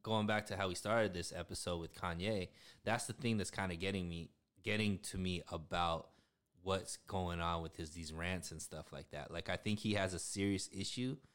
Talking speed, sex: 215 wpm, male